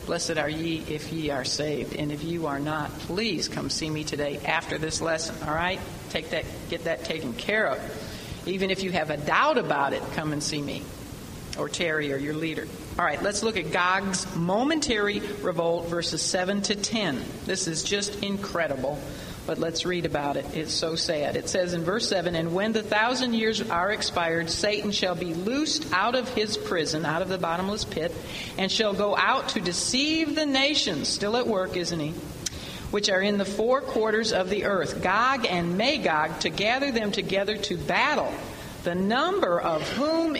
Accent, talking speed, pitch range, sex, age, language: American, 195 wpm, 165-215 Hz, female, 50-69, English